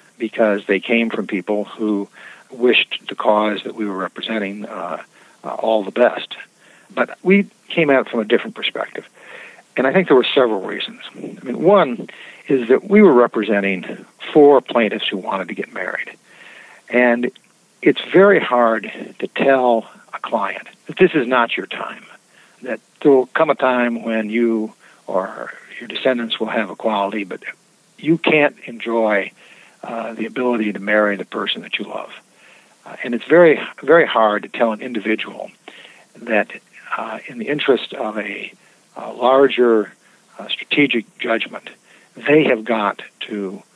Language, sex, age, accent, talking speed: English, male, 60-79, American, 160 wpm